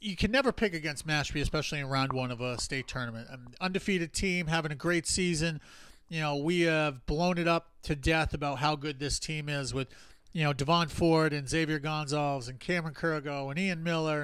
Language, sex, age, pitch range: English, male, 40-59, 145-185 Hz